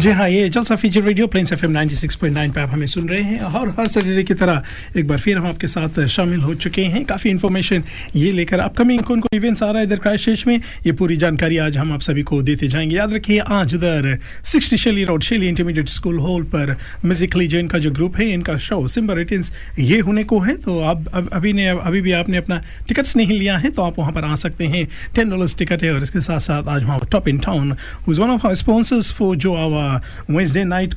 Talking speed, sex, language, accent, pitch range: 225 wpm, male, Hindi, native, 155-205 Hz